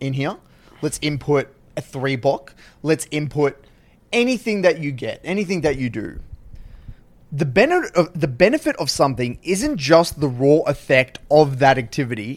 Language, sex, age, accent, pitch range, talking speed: English, male, 20-39, Australian, 135-160 Hz, 155 wpm